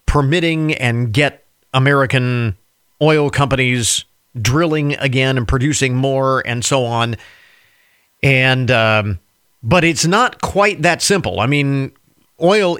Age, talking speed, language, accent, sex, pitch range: 40-59, 115 wpm, English, American, male, 120-155 Hz